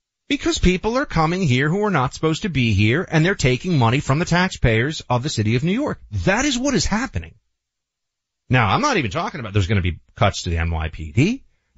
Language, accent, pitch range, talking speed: English, American, 95-145 Hz, 230 wpm